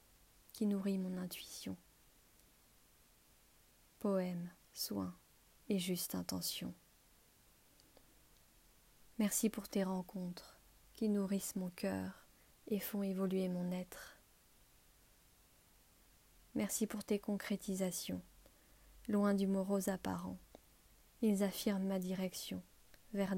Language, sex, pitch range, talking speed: French, female, 180-205 Hz, 90 wpm